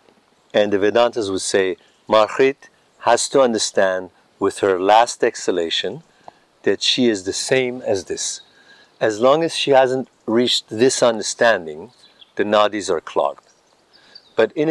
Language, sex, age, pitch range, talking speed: English, male, 50-69, 105-130 Hz, 140 wpm